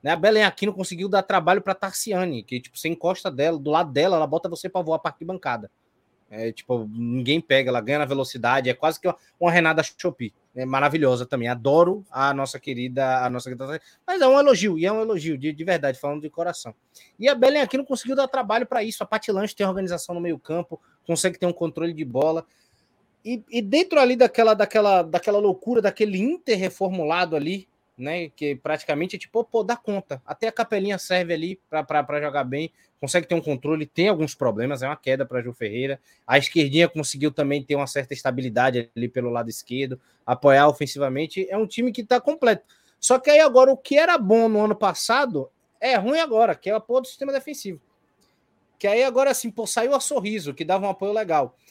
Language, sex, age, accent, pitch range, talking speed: Portuguese, male, 20-39, Brazilian, 140-210 Hz, 210 wpm